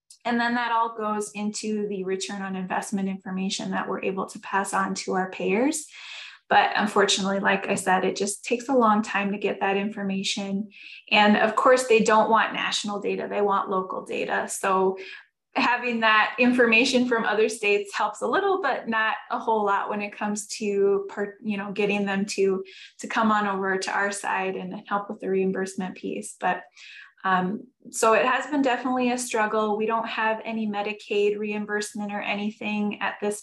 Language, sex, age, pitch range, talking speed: English, female, 20-39, 195-225 Hz, 185 wpm